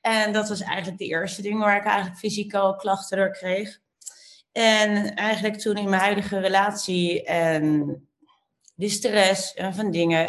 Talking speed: 155 wpm